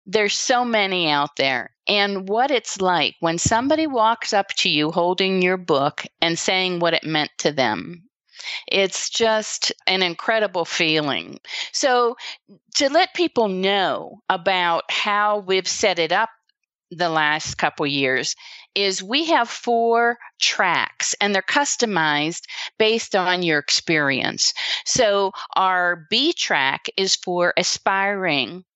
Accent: American